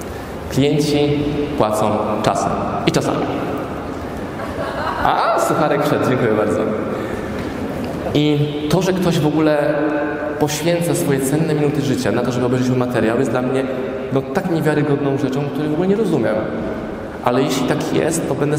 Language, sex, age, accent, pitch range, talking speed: Polish, male, 20-39, native, 115-145 Hz, 145 wpm